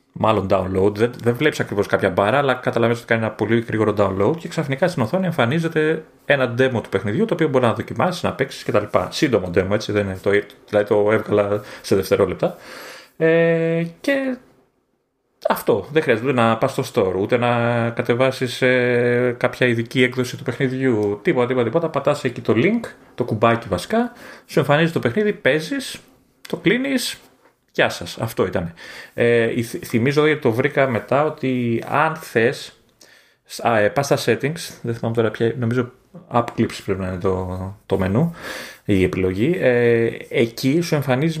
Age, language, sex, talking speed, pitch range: 30-49, Greek, male, 160 wpm, 115-155 Hz